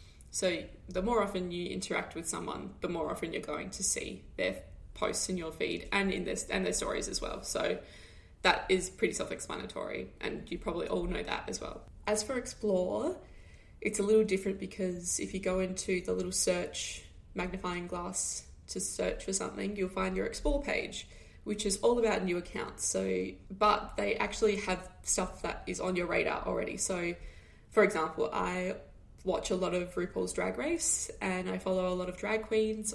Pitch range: 175-210 Hz